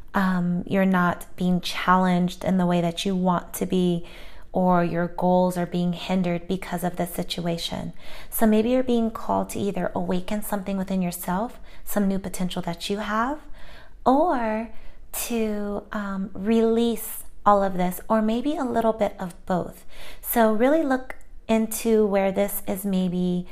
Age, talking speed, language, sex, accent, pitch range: 30-49, 160 wpm, English, female, American, 180-215 Hz